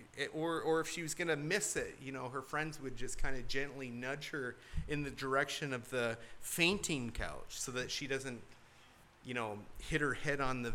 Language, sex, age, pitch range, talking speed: English, male, 30-49, 120-150 Hz, 220 wpm